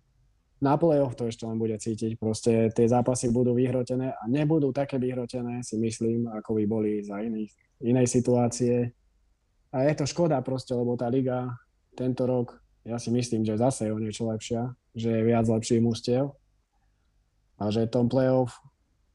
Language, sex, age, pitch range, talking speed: Slovak, male, 20-39, 110-125 Hz, 165 wpm